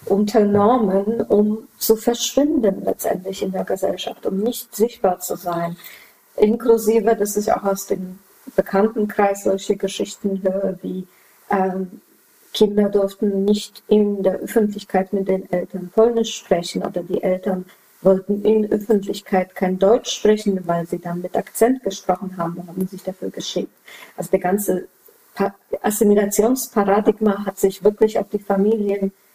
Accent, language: German, German